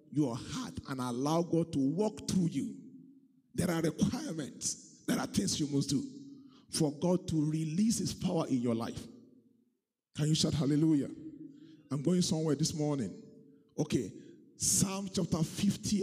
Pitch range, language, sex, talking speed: 165-225 Hz, English, male, 150 wpm